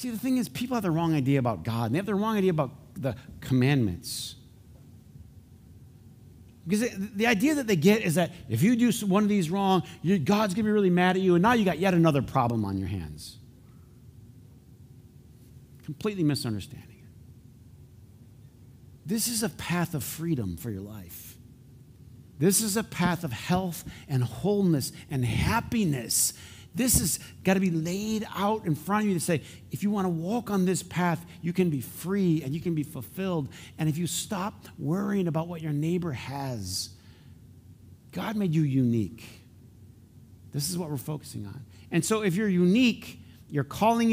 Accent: American